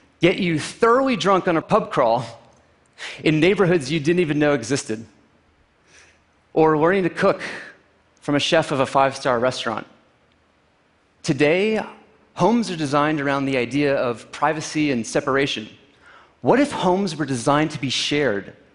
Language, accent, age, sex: Portuguese, American, 30-49, male